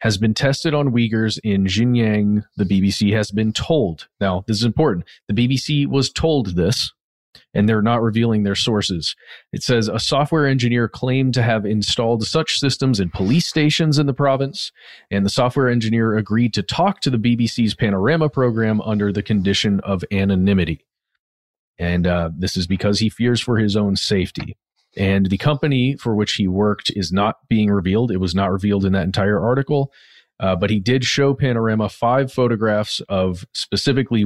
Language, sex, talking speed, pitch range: English, male, 175 wpm, 100-125 Hz